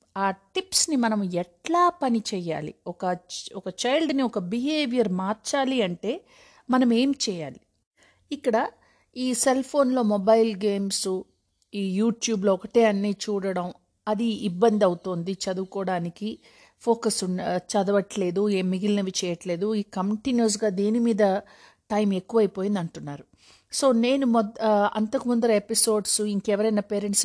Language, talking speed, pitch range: Telugu, 105 wpm, 190-235 Hz